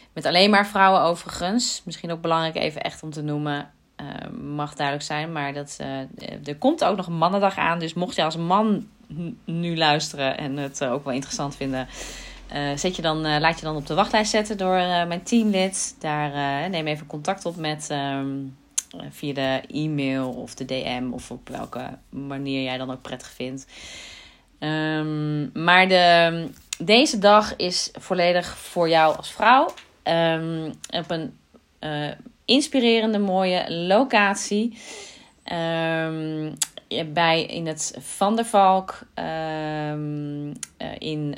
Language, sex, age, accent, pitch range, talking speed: Dutch, female, 30-49, Dutch, 140-175 Hz, 155 wpm